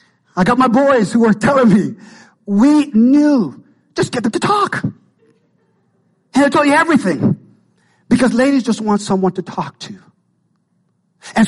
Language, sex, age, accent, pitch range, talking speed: English, male, 50-69, American, 190-245 Hz, 150 wpm